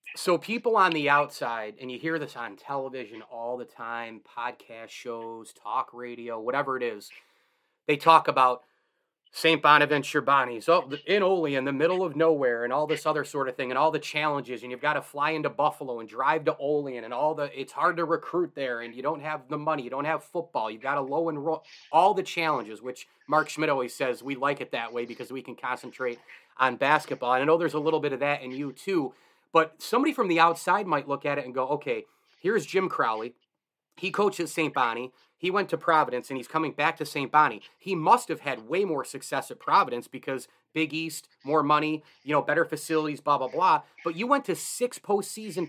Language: English